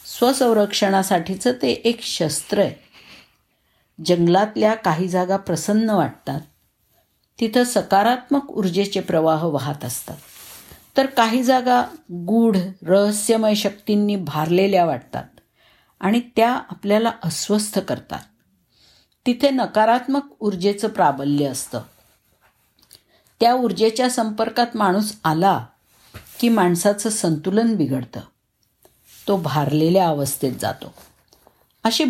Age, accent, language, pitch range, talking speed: 50-69, native, Marathi, 170-230 Hz, 90 wpm